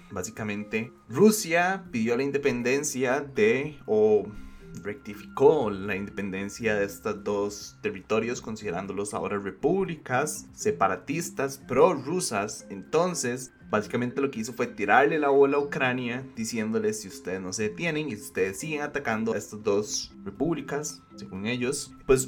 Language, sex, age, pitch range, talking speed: Spanish, male, 20-39, 110-165 Hz, 130 wpm